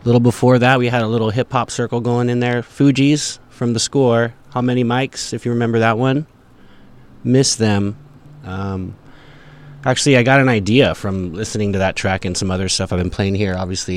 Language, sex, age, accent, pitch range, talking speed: English, male, 20-39, American, 100-130 Hz, 200 wpm